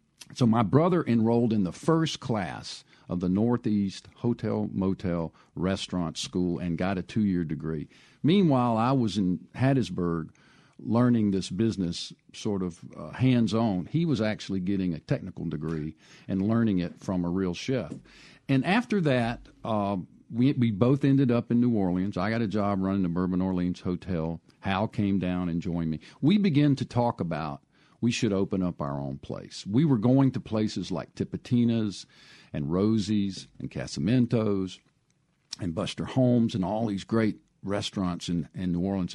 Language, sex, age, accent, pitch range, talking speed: English, male, 50-69, American, 90-120 Hz, 165 wpm